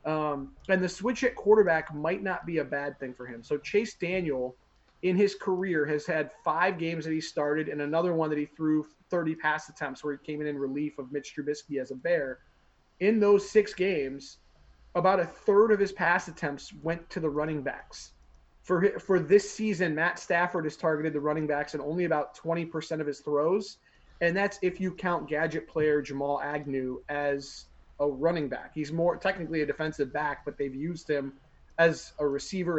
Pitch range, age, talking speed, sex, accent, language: 140-170 Hz, 30-49, 200 wpm, male, American, English